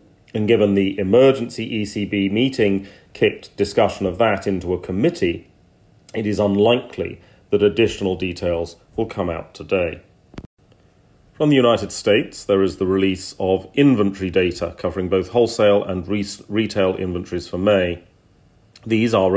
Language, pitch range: English, 90-115 Hz